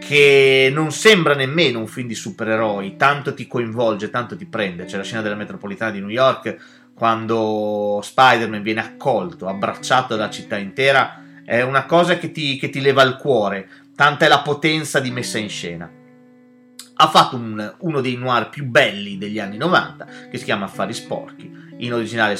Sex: male